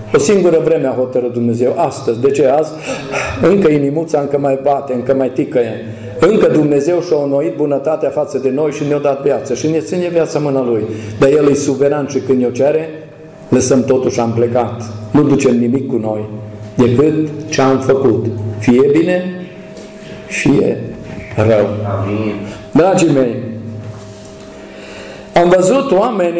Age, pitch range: 50-69, 120-165 Hz